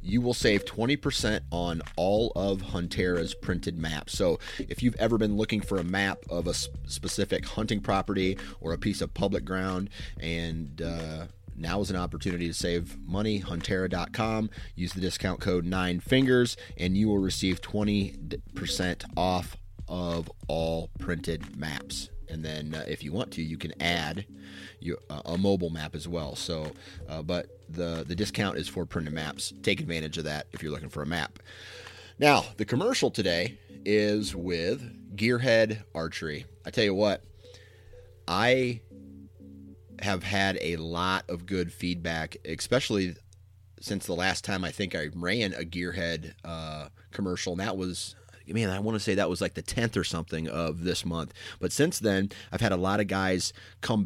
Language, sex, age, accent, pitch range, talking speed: English, male, 30-49, American, 85-100 Hz, 170 wpm